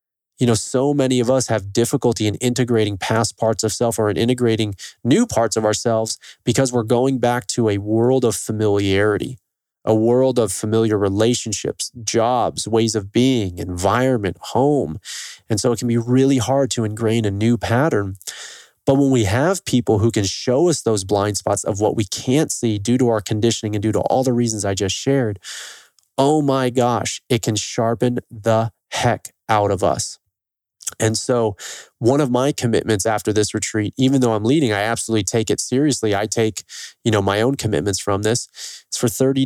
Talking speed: 190 wpm